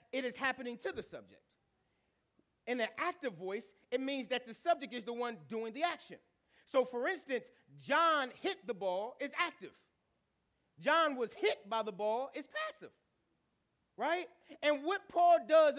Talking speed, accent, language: 165 wpm, American, English